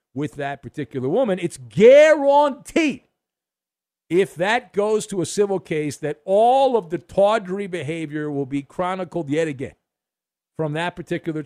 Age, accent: 50-69, American